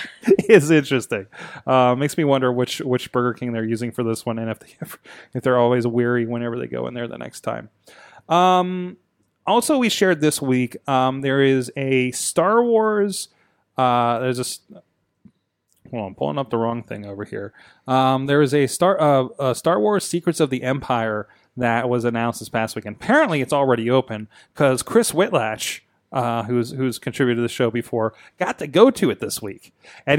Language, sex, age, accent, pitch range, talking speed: English, male, 20-39, American, 125-160 Hz, 195 wpm